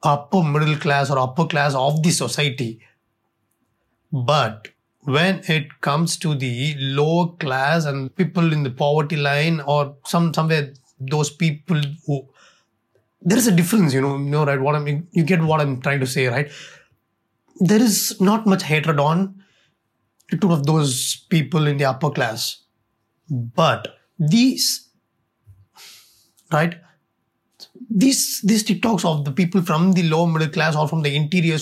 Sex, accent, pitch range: male, native, 135-180 Hz